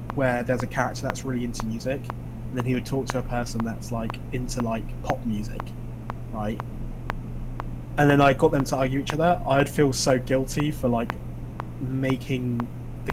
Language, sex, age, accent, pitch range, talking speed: English, male, 20-39, British, 120-135 Hz, 185 wpm